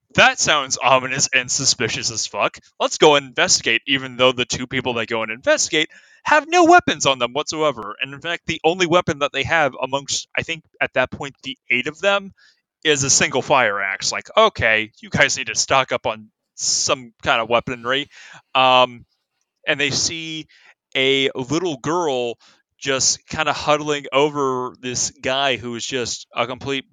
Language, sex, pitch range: English, male, 125-150 Hz